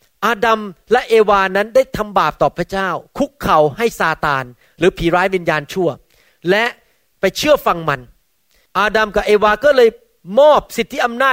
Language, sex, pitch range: Thai, male, 170-225 Hz